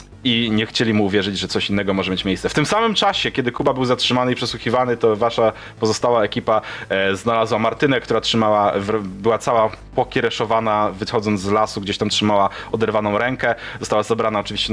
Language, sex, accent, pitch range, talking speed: Polish, male, native, 105-125 Hz, 175 wpm